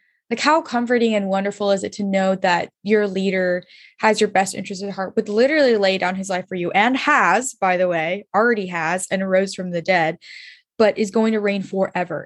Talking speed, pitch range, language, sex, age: 215 wpm, 185-230 Hz, English, female, 10-29